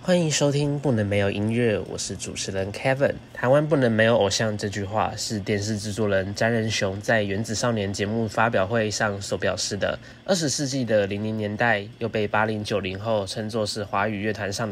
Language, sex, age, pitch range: Chinese, male, 20-39, 105-125 Hz